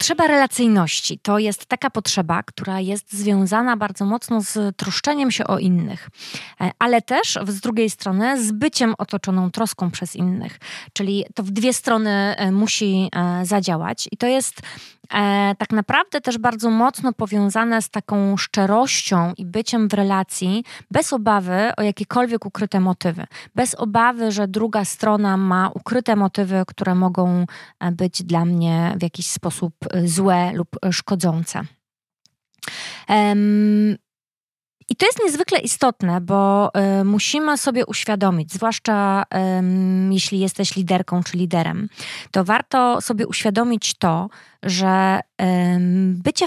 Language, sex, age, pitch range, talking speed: Polish, female, 20-39, 185-225 Hz, 125 wpm